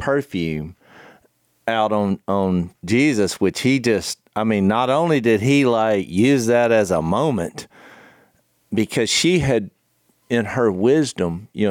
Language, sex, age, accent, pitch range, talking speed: English, male, 40-59, American, 95-120 Hz, 140 wpm